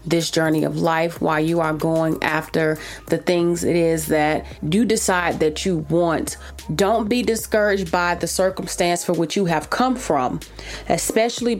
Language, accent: English, American